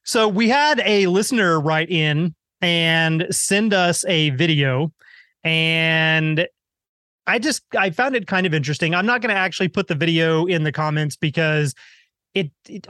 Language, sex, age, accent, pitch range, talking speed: English, male, 30-49, American, 155-195 Hz, 165 wpm